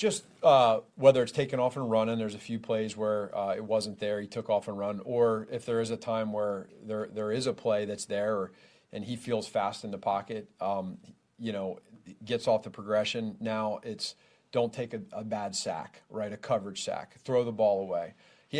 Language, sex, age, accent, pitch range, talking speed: English, male, 40-59, American, 100-120 Hz, 220 wpm